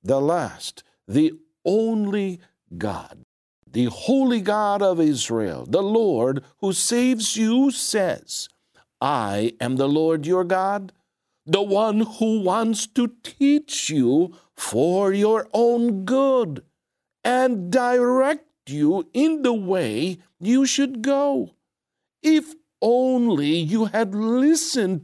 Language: English